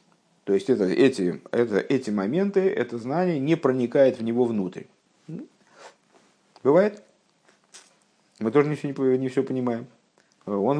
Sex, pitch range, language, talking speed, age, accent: male, 105-160 Hz, Russian, 135 wpm, 50-69, native